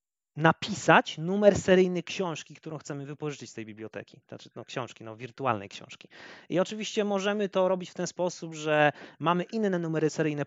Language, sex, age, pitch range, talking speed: Polish, male, 30-49, 155-200 Hz, 165 wpm